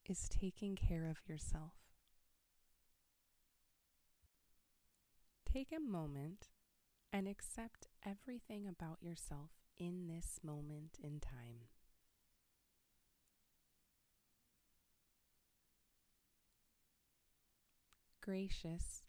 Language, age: English, 20-39